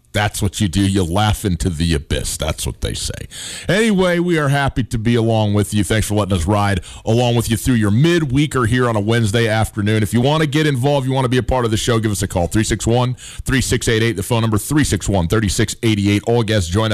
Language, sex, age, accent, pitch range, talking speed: English, male, 30-49, American, 100-135 Hz, 235 wpm